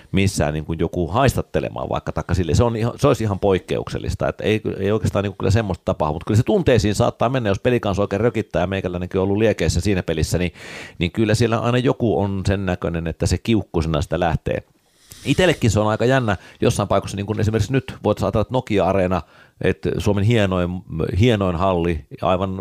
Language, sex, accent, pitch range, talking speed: Finnish, male, native, 80-105 Hz, 195 wpm